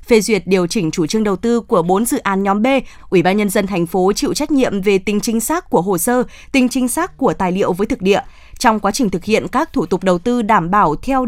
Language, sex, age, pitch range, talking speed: Vietnamese, female, 20-39, 195-260 Hz, 275 wpm